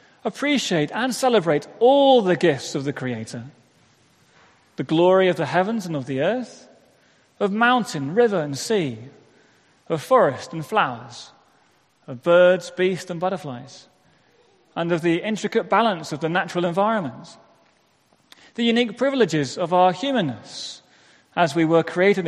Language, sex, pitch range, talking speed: English, male, 150-210 Hz, 135 wpm